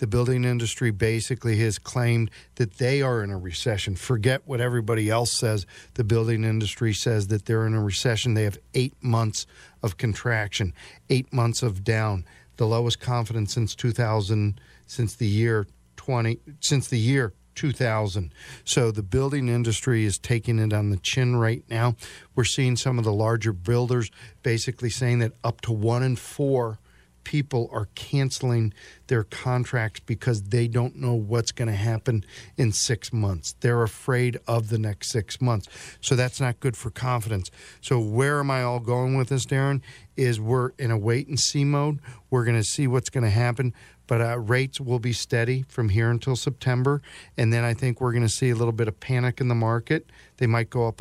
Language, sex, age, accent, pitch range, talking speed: English, male, 50-69, American, 110-125 Hz, 180 wpm